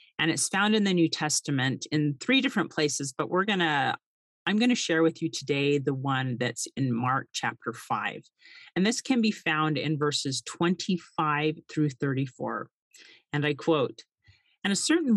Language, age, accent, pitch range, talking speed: English, 40-59, American, 140-180 Hz, 180 wpm